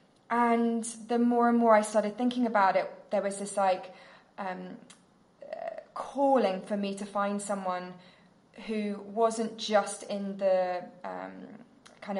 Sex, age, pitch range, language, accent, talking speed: female, 20-39, 190-230 Hz, English, British, 145 wpm